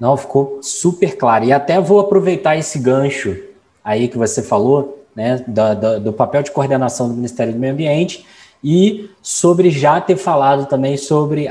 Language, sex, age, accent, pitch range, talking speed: Portuguese, male, 20-39, Brazilian, 125-180 Hz, 170 wpm